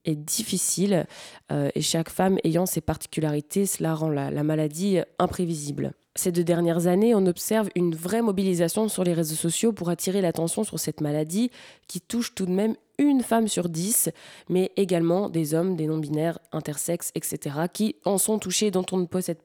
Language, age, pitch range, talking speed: French, 20-39, 160-200 Hz, 180 wpm